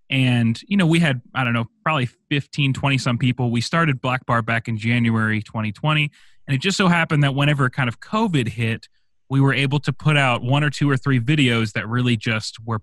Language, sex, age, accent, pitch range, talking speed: English, male, 30-49, American, 115-145 Hz, 225 wpm